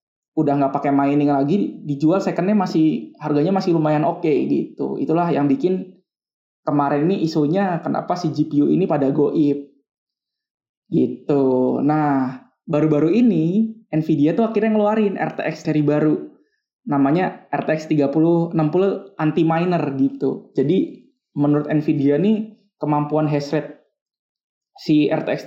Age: 20-39